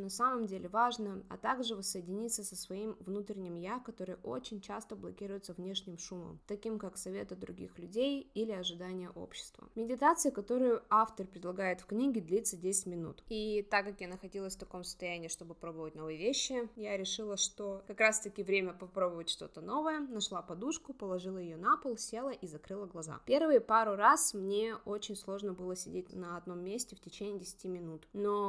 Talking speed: 175 wpm